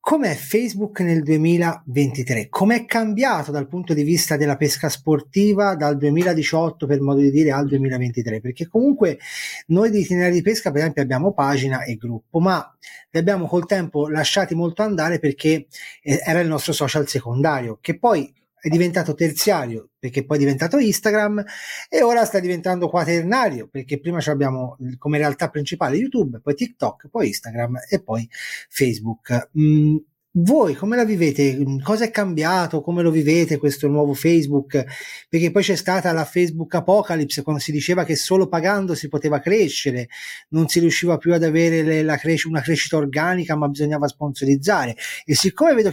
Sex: male